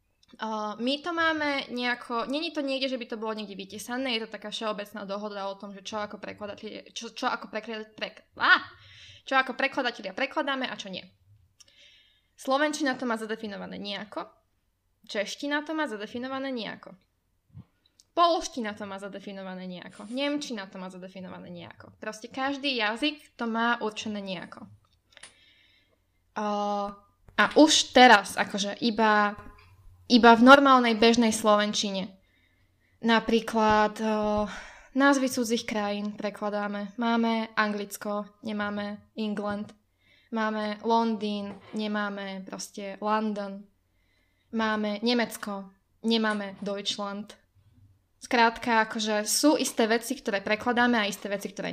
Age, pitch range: 10-29, 200-245 Hz